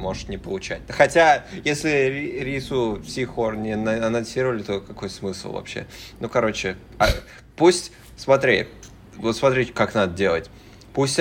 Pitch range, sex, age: 105-125 Hz, male, 20-39